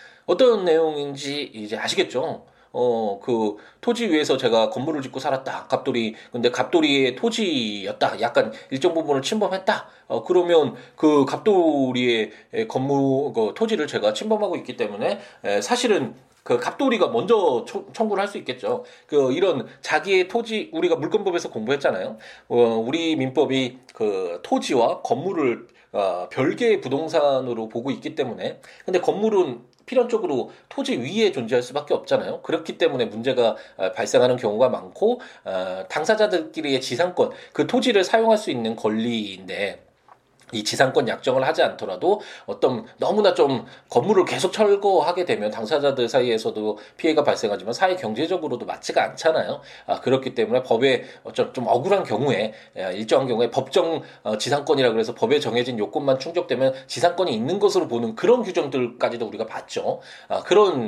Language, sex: Korean, male